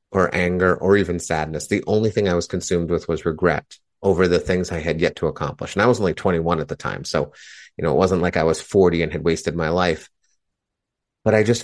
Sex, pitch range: male, 85-105 Hz